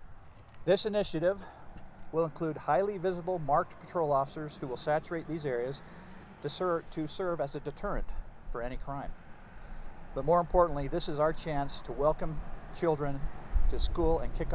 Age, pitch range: 50-69, 130-165 Hz